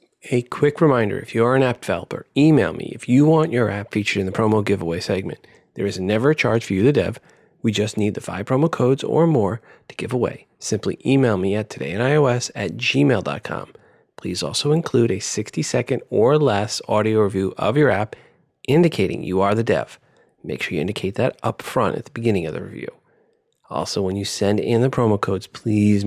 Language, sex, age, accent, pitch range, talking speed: English, male, 40-59, American, 105-130 Hz, 205 wpm